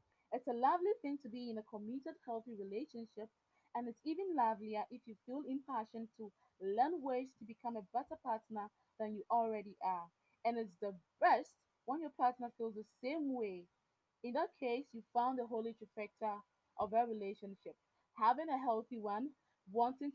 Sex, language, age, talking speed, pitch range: female, English, 20-39, 175 wpm, 215-265 Hz